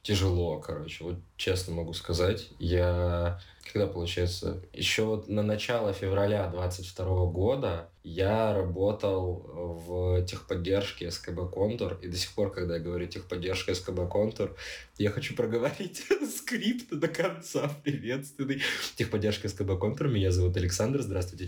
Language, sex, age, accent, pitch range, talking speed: Russian, male, 20-39, native, 90-105 Hz, 130 wpm